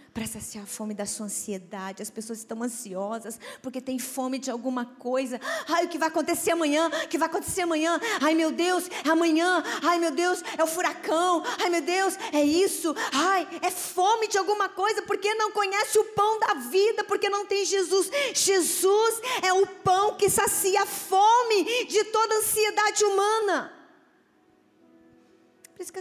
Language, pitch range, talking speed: Portuguese, 260-375 Hz, 180 wpm